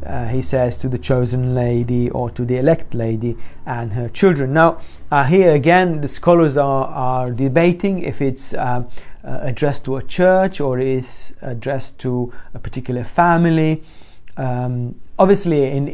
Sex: male